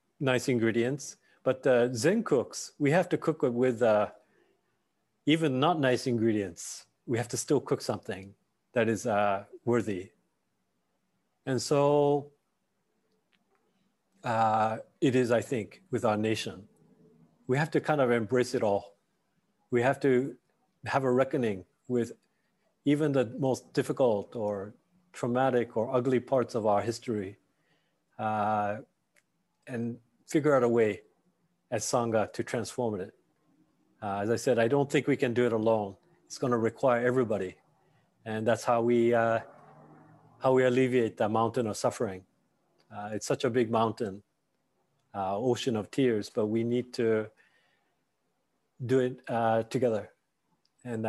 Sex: male